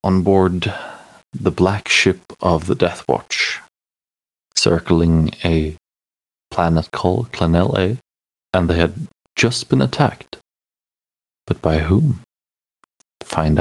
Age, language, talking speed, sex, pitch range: 30-49, English, 105 wpm, male, 70-90 Hz